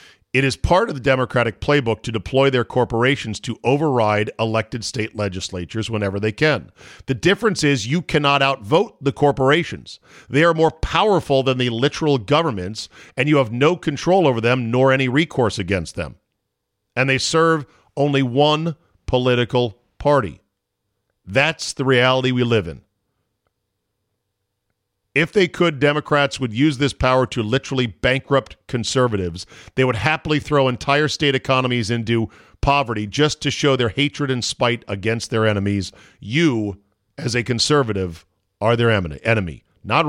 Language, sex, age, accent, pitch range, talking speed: English, male, 50-69, American, 105-140 Hz, 150 wpm